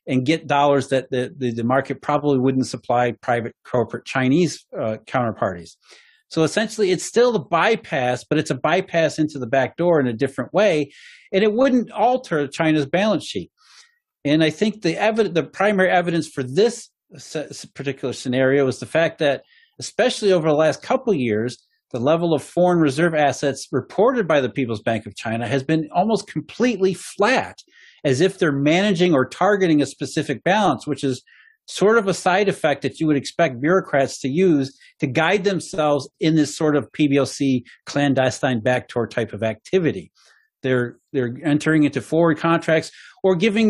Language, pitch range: English, 130-185 Hz